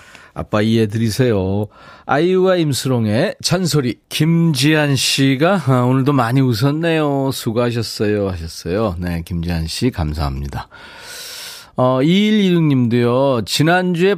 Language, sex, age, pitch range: Korean, male, 40-59, 105-155 Hz